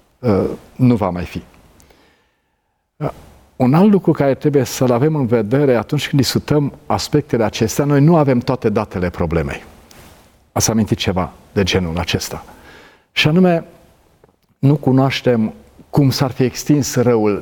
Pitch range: 100-125 Hz